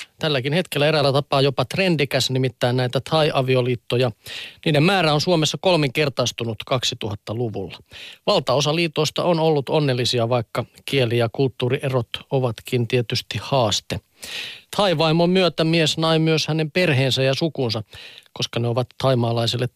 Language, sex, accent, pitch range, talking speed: Finnish, male, native, 125-155 Hz, 125 wpm